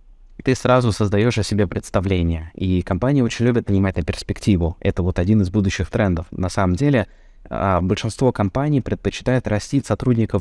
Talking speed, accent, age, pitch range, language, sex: 155 wpm, native, 20-39, 90-110 Hz, Russian, male